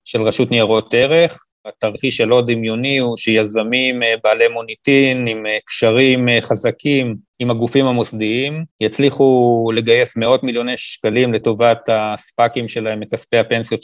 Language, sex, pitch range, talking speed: Hebrew, male, 115-140 Hz, 120 wpm